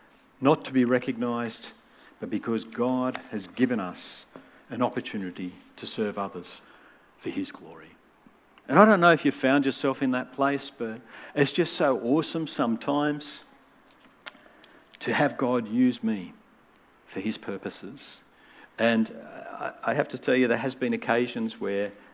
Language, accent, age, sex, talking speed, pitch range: English, Australian, 50-69, male, 145 wpm, 110-145 Hz